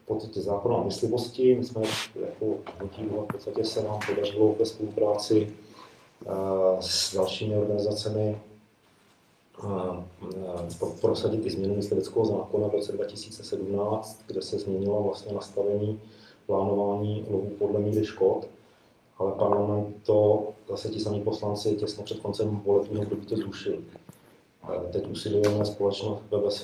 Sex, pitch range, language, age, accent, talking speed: male, 100-110 Hz, Czech, 40-59, native, 115 wpm